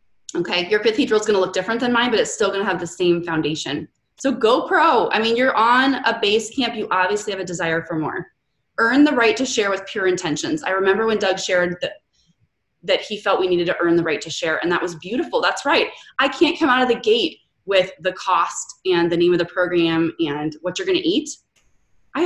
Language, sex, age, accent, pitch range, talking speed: English, female, 20-39, American, 170-245 Hz, 245 wpm